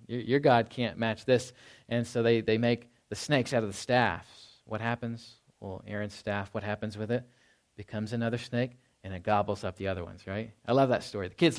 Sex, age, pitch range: male, 40-59, 110-135 Hz